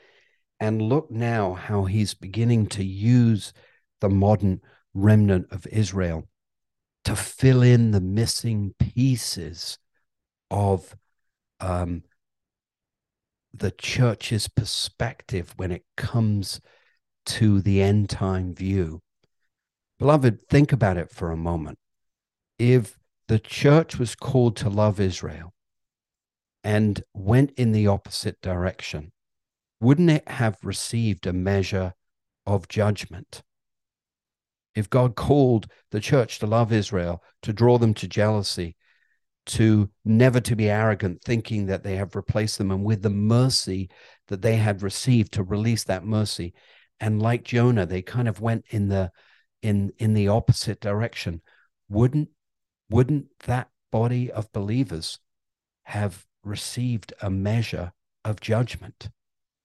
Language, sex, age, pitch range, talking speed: English, male, 50-69, 95-115 Hz, 125 wpm